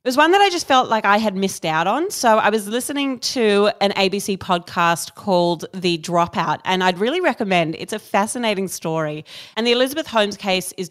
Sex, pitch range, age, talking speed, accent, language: female, 170-220 Hz, 30-49, 210 wpm, Australian, English